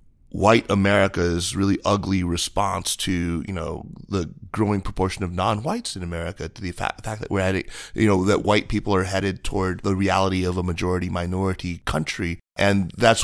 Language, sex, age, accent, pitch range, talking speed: English, male, 30-49, American, 90-105 Hz, 185 wpm